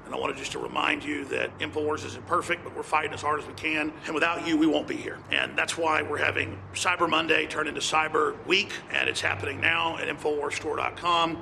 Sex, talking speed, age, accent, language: male, 225 wpm, 40-59, American, English